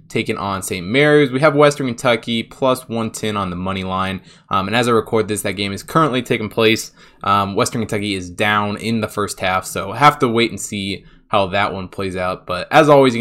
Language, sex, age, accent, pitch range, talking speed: English, male, 20-39, American, 100-130 Hz, 230 wpm